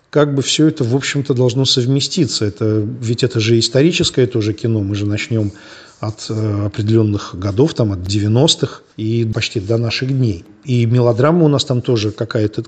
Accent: native